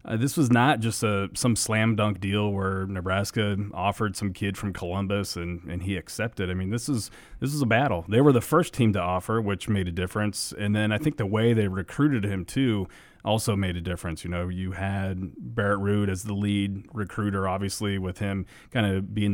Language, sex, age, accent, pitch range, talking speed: English, male, 30-49, American, 95-115 Hz, 215 wpm